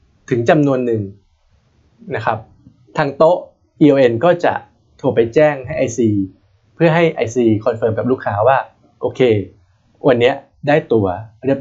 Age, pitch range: 20-39, 110-165 Hz